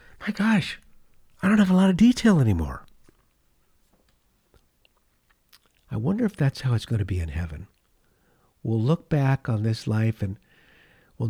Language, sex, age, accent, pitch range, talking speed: English, male, 50-69, American, 100-150 Hz, 155 wpm